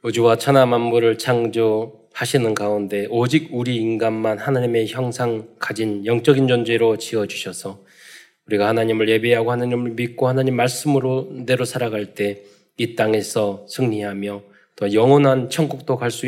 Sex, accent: male, native